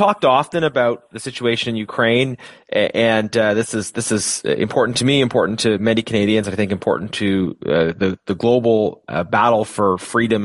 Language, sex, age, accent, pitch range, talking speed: English, male, 30-49, American, 105-120 Hz, 190 wpm